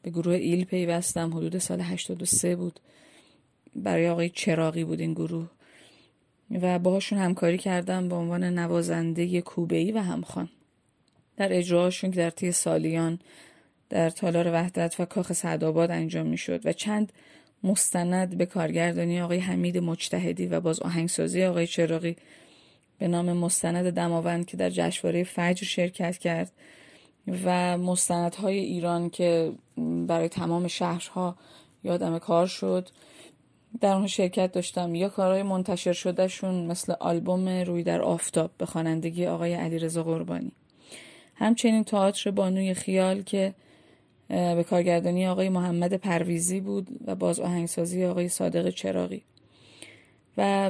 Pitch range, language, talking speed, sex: 170-185 Hz, Persian, 130 wpm, female